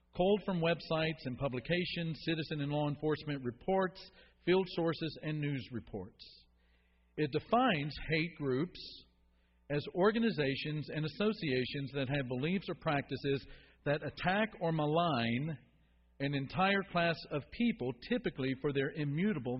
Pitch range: 120-175 Hz